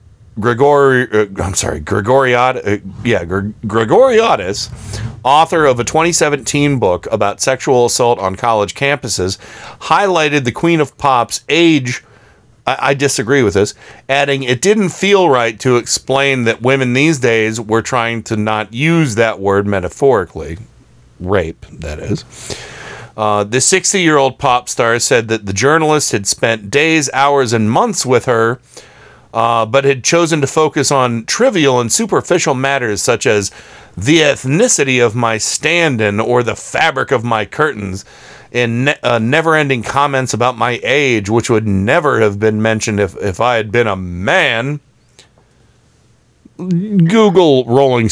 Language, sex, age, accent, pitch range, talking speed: English, male, 40-59, American, 110-140 Hz, 145 wpm